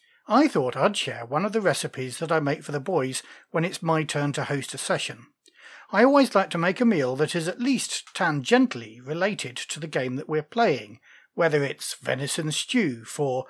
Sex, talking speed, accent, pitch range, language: male, 205 wpm, British, 140-205 Hz, English